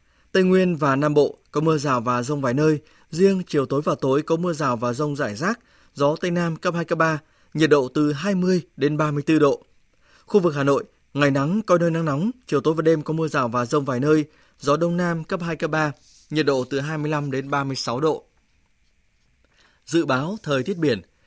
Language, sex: Vietnamese, male